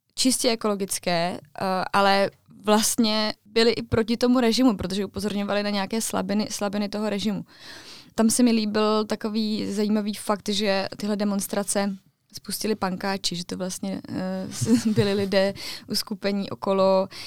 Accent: native